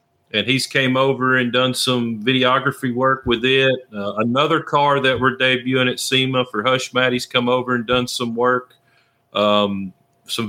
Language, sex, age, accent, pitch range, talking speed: English, male, 40-59, American, 115-135 Hz, 170 wpm